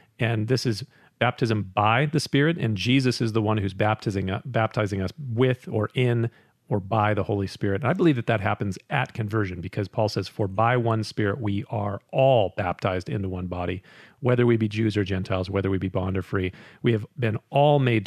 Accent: American